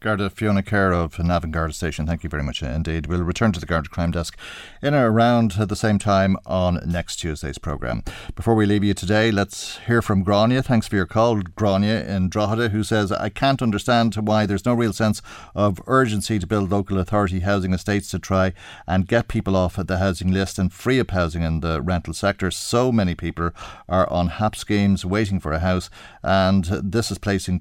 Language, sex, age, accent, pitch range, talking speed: English, male, 40-59, Irish, 90-110 Hz, 205 wpm